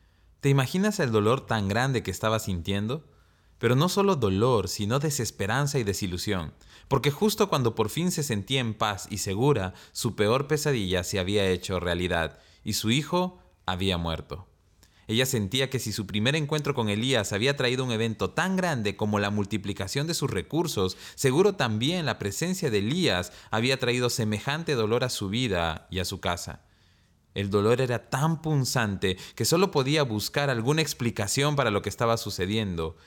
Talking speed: 170 wpm